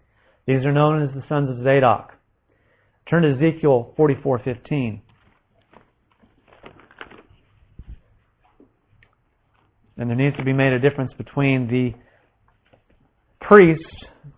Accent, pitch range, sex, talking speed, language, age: American, 115-150 Hz, male, 95 wpm, English, 40-59